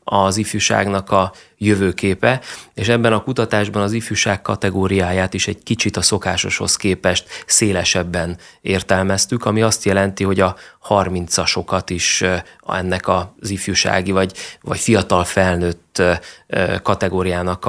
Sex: male